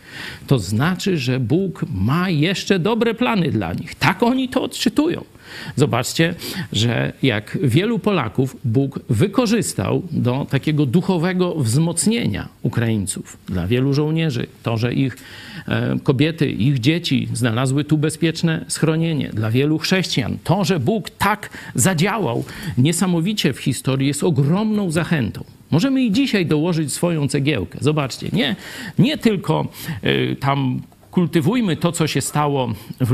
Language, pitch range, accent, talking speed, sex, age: Polish, 130-170 Hz, native, 125 wpm, male, 50-69